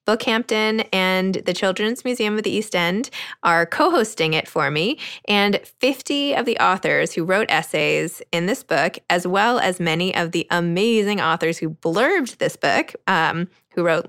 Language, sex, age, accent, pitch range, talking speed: English, female, 20-39, American, 180-225 Hz, 170 wpm